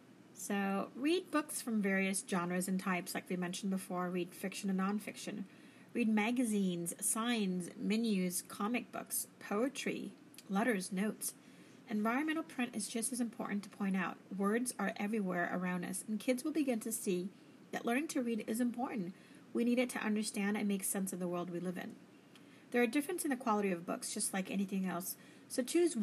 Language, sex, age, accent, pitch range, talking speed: English, female, 40-59, American, 195-245 Hz, 180 wpm